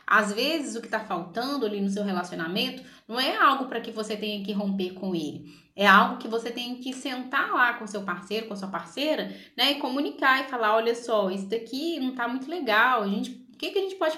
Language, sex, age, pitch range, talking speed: Portuguese, female, 20-39, 200-255 Hz, 240 wpm